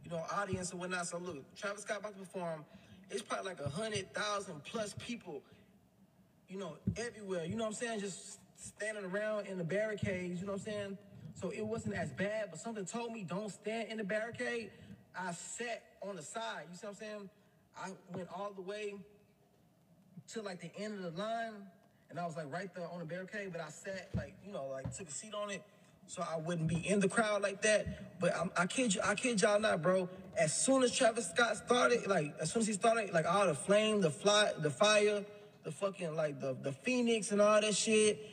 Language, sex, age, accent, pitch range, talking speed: English, male, 20-39, American, 180-220 Hz, 225 wpm